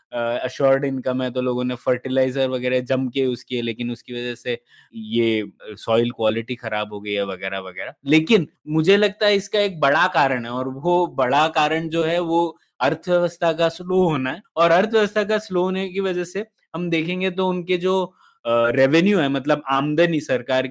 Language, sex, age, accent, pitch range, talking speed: Hindi, male, 20-39, native, 130-170 Hz, 185 wpm